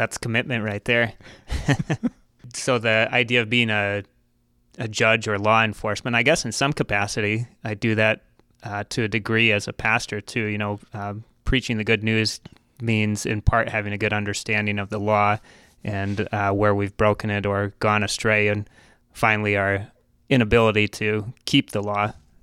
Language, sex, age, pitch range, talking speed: English, male, 20-39, 105-115 Hz, 175 wpm